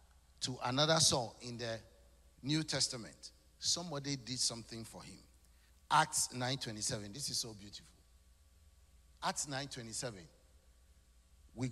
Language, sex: English, male